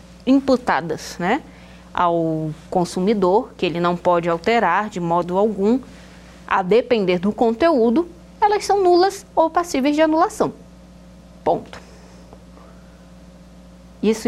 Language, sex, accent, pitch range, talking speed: Portuguese, female, Brazilian, 170-235 Hz, 105 wpm